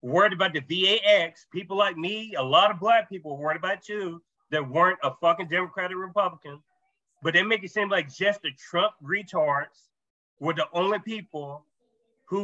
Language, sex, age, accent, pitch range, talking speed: English, male, 30-49, American, 155-200 Hz, 180 wpm